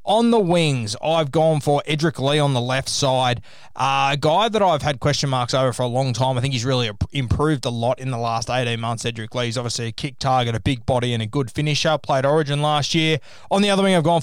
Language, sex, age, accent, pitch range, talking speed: English, male, 20-39, Australian, 125-150 Hz, 255 wpm